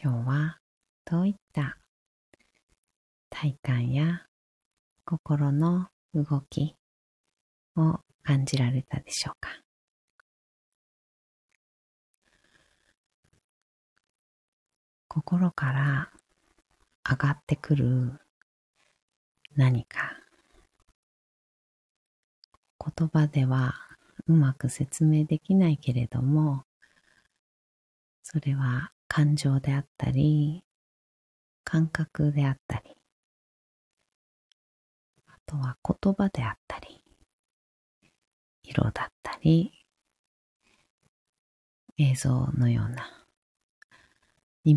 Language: Japanese